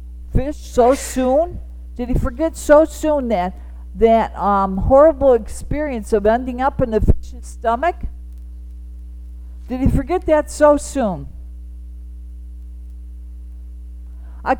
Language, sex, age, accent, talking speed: English, female, 50-69, American, 110 wpm